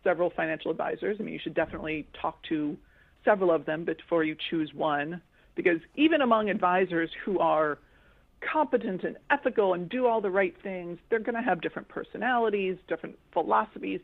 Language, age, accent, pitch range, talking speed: English, 40-59, American, 165-220 Hz, 170 wpm